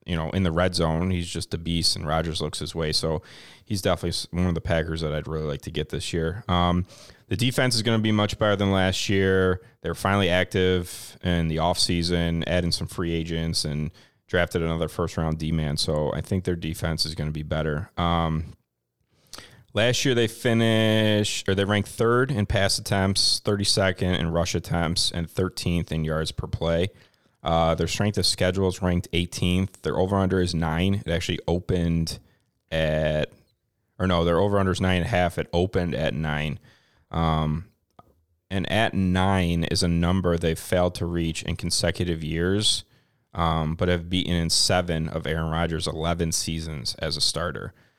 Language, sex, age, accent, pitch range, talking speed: English, male, 30-49, American, 80-95 Hz, 180 wpm